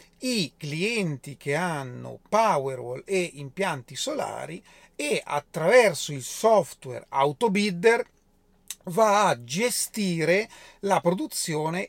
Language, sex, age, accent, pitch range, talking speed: Italian, male, 40-59, native, 145-200 Hz, 90 wpm